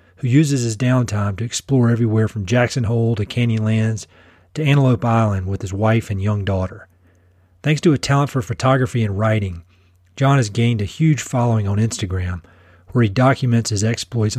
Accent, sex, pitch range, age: American, male, 105-130 Hz, 40-59